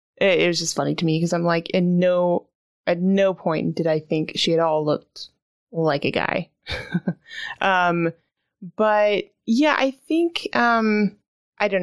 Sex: female